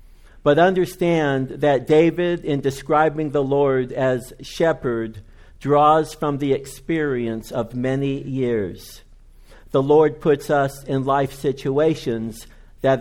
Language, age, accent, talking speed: English, 60-79, American, 115 wpm